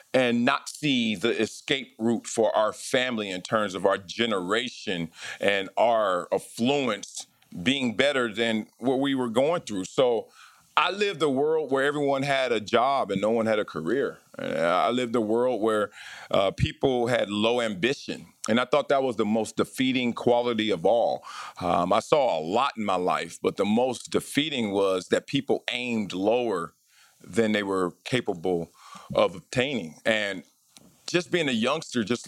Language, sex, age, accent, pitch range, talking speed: English, male, 40-59, American, 110-135 Hz, 170 wpm